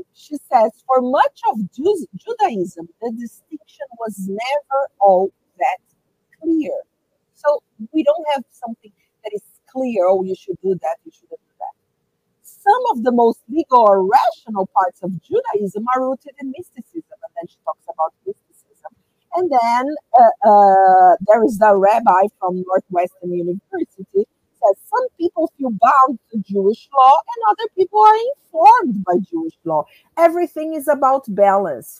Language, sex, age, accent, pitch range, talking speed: English, female, 50-69, Brazilian, 200-315 Hz, 150 wpm